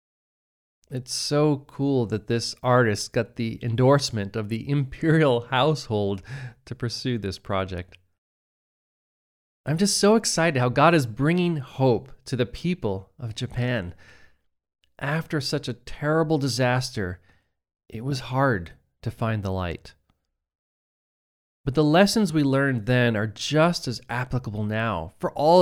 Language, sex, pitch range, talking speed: English, male, 95-140 Hz, 130 wpm